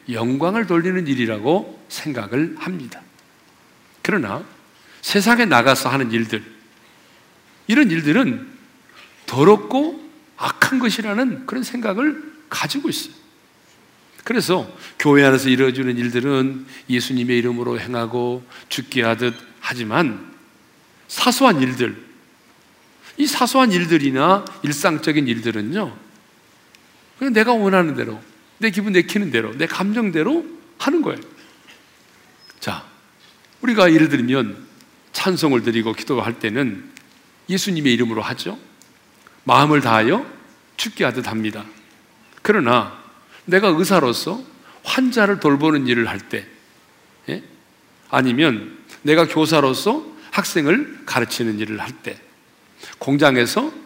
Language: Korean